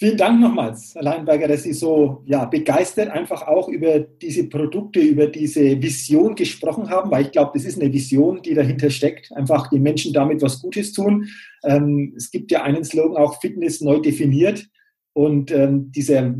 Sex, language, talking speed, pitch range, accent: male, German, 175 wpm, 140-190 Hz, German